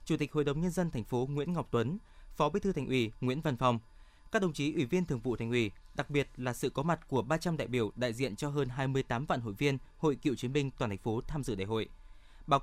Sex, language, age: male, Vietnamese, 20-39